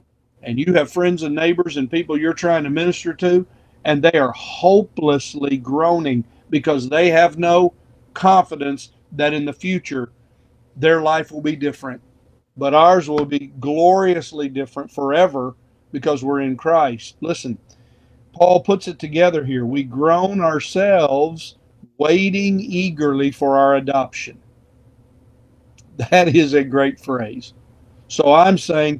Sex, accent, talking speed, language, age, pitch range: male, American, 135 wpm, English, 50-69, 125-165 Hz